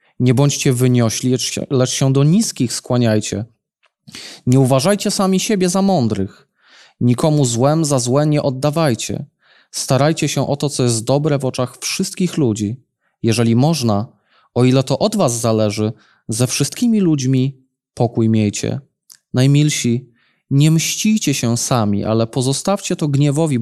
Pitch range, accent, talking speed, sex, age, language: 120-155 Hz, native, 135 wpm, male, 20-39, Polish